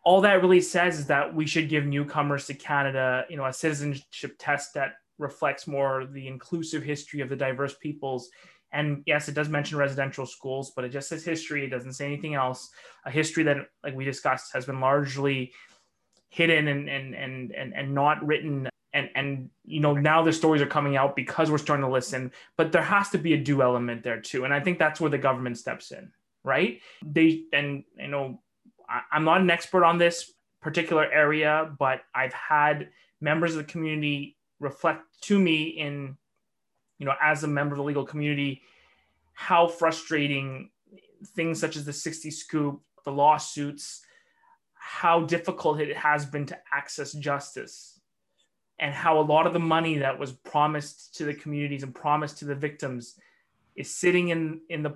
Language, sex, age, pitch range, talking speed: English, male, 20-39, 140-160 Hz, 185 wpm